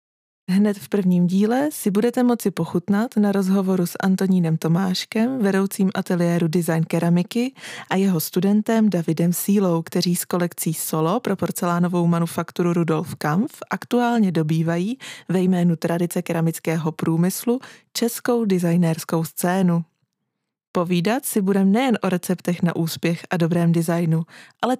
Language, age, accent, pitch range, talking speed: Czech, 20-39, native, 170-200 Hz, 130 wpm